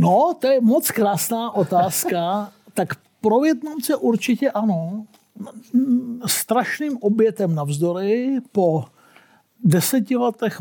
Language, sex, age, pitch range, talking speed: Czech, male, 50-69, 170-220 Hz, 90 wpm